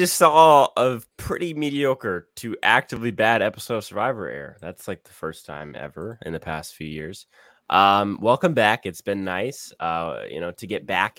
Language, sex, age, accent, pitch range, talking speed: English, male, 10-29, American, 90-125 Hz, 190 wpm